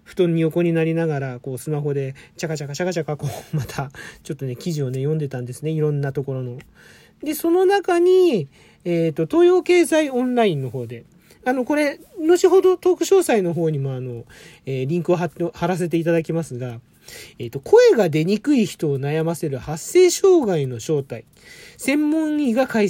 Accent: native